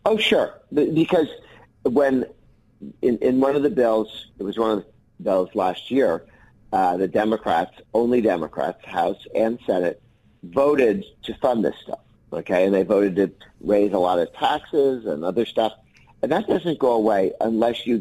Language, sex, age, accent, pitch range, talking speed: English, male, 50-69, American, 105-120 Hz, 170 wpm